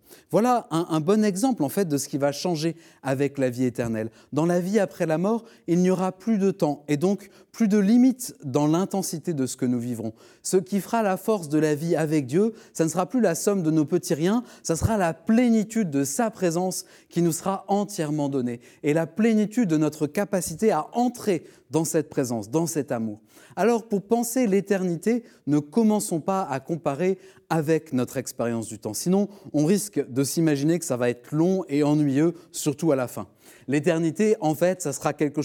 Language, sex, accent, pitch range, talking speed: French, male, French, 140-195 Hz, 205 wpm